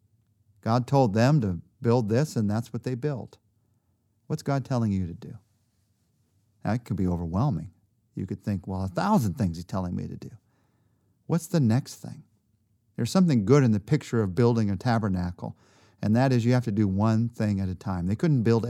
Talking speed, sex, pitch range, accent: 200 wpm, male, 105-130 Hz, American